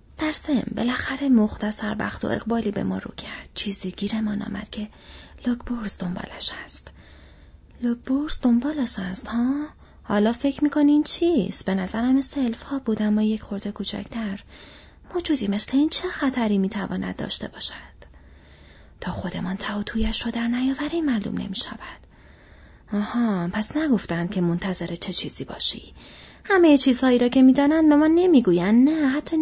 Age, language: 30-49, Persian